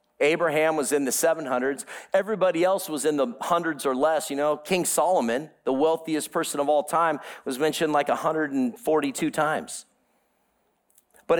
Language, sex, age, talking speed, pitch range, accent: English, male, 40-59, 155 wpm, 130-165 Hz, American